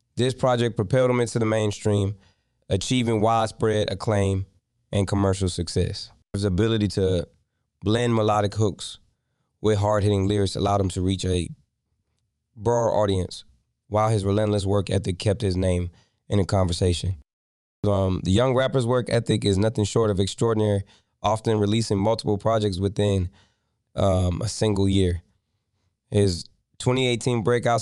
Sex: male